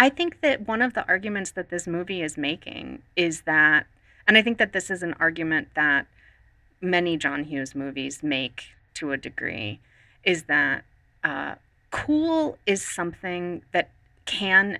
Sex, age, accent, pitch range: female, 30-49, American, 140-180 Hz